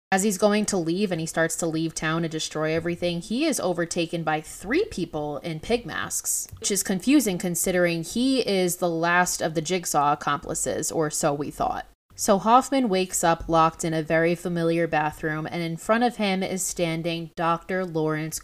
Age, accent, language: 20-39, American, English